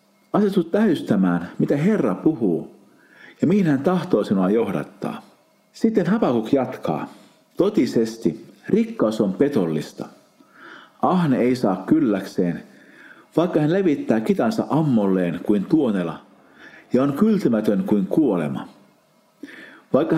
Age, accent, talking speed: 50-69, native, 105 wpm